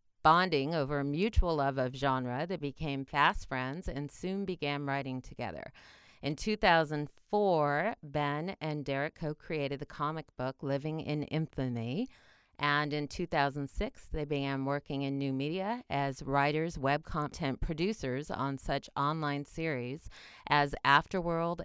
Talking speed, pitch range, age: 135 wpm, 140-170 Hz, 40-59